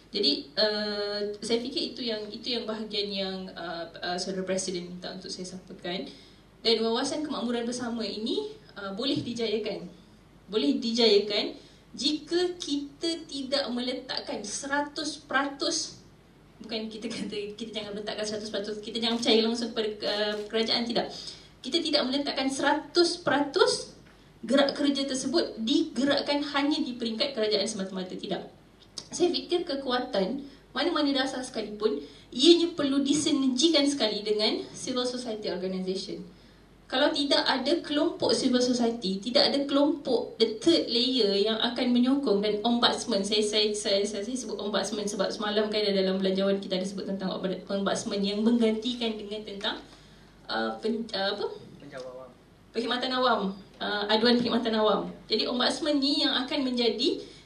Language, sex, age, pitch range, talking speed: Malay, female, 20-39, 205-280 Hz, 140 wpm